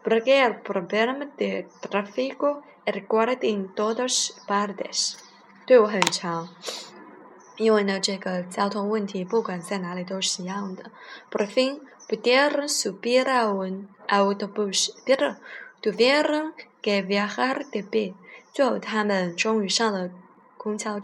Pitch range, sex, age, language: 200-250 Hz, female, 20-39, Chinese